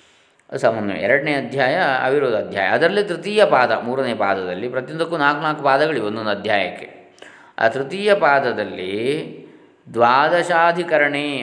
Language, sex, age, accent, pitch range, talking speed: Kannada, male, 20-39, native, 110-135 Hz, 100 wpm